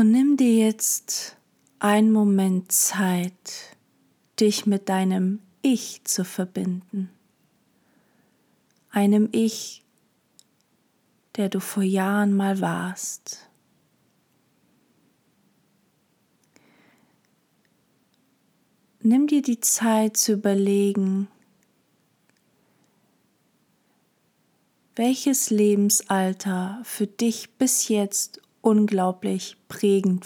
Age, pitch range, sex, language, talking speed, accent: 40-59, 190-215 Hz, female, German, 70 wpm, German